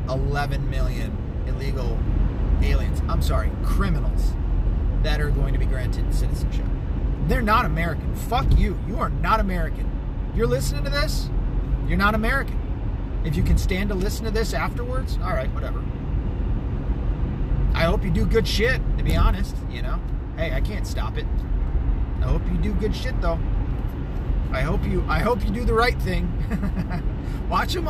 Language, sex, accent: English, male, American